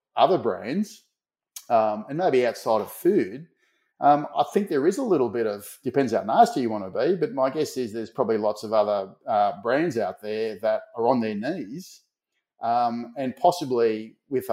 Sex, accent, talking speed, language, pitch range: male, Australian, 190 wpm, English, 110-135 Hz